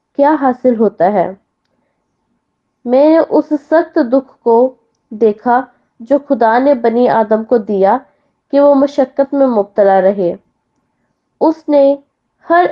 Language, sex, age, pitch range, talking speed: Hindi, female, 20-39, 230-280 Hz, 120 wpm